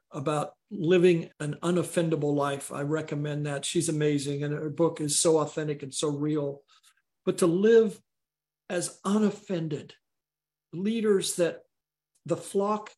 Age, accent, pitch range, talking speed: 50-69, American, 155-190 Hz, 130 wpm